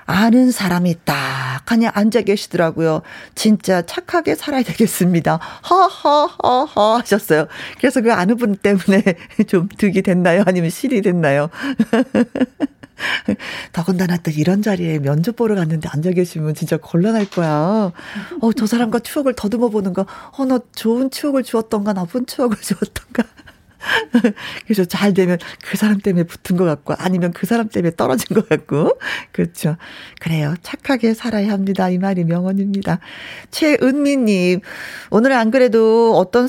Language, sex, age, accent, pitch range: Korean, female, 40-59, native, 180-240 Hz